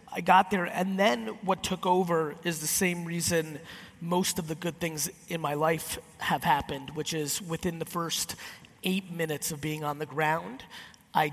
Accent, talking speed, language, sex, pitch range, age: American, 185 wpm, English, male, 150-180 Hz, 30-49